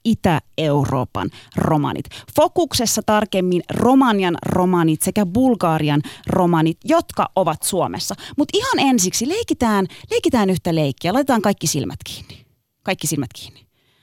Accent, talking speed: native, 110 wpm